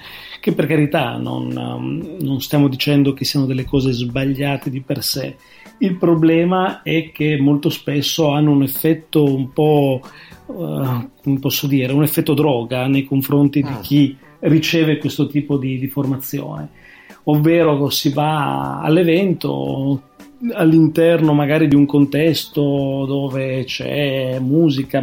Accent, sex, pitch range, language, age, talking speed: native, male, 135-160 Hz, Italian, 40-59, 130 wpm